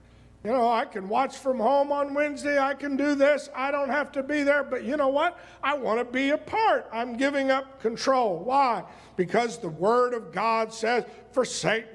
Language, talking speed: English, 205 wpm